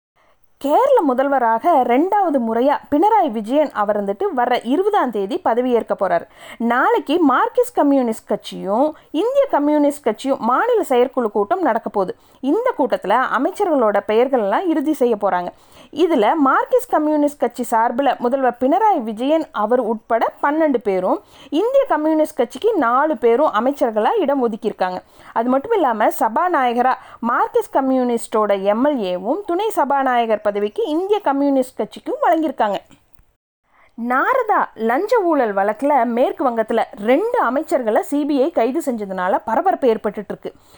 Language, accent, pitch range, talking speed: Tamil, native, 230-325 Hz, 115 wpm